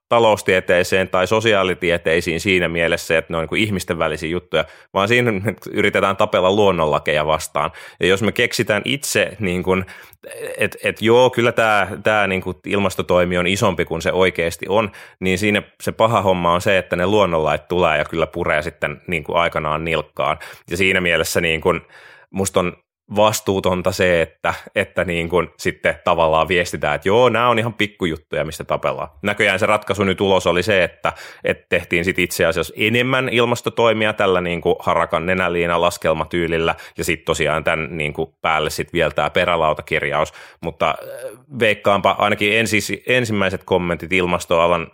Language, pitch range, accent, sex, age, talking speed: Finnish, 85-105 Hz, native, male, 20-39, 150 wpm